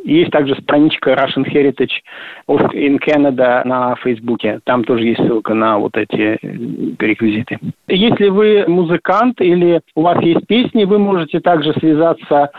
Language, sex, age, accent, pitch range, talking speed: Russian, male, 50-69, native, 145-185 Hz, 140 wpm